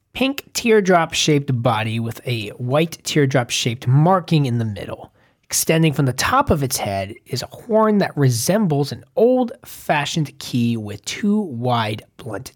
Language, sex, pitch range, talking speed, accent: English, male, 120-175 Hz, 145 wpm, American